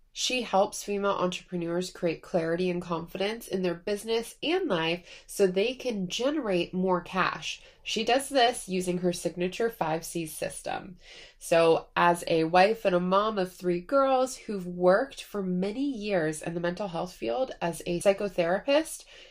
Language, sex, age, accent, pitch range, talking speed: English, female, 20-39, American, 170-210 Hz, 155 wpm